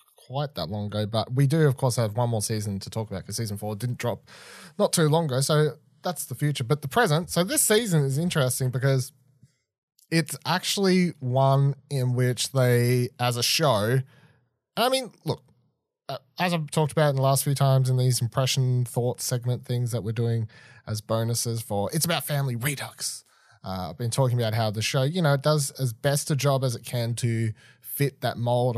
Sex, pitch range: male, 115-145 Hz